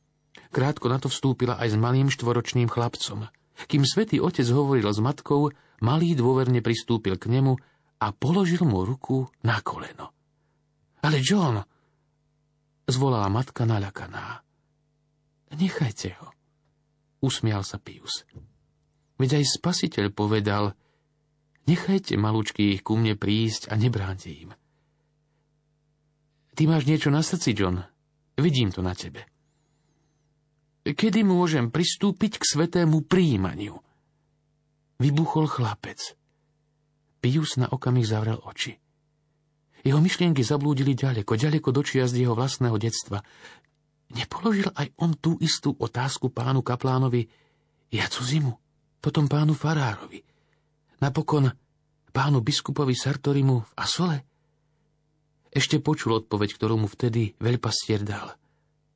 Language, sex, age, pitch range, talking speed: Slovak, male, 40-59, 120-150 Hz, 115 wpm